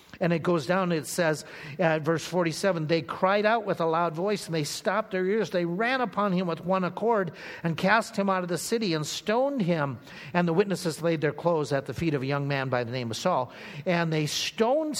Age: 50-69